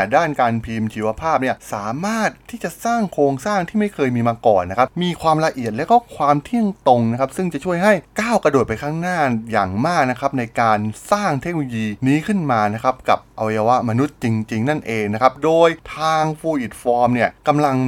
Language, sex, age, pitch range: Thai, male, 20-39, 110-155 Hz